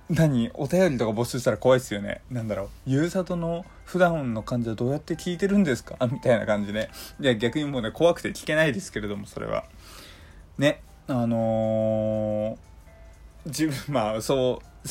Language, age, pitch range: Japanese, 20-39, 105-175 Hz